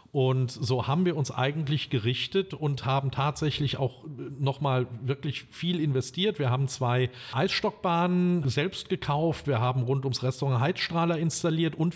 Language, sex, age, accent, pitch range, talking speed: German, male, 40-59, German, 125-155 Hz, 150 wpm